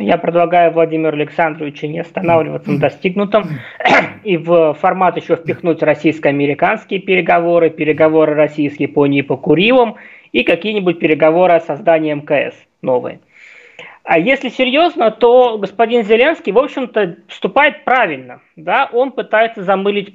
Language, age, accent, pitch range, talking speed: Russian, 20-39, native, 165-225 Hz, 125 wpm